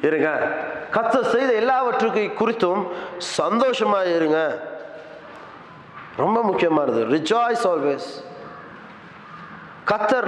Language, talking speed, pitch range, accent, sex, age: Tamil, 60 wpm, 165-255 Hz, native, male, 30-49